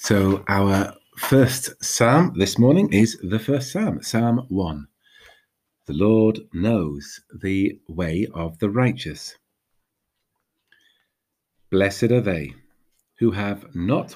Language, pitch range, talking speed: English, 95-120 Hz, 110 wpm